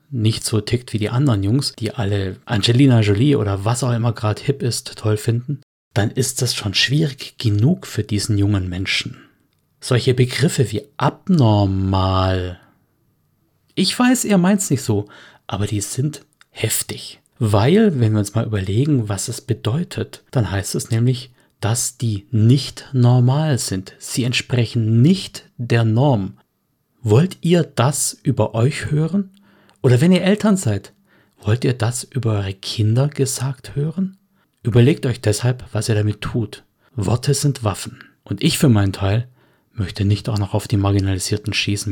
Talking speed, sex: 155 wpm, male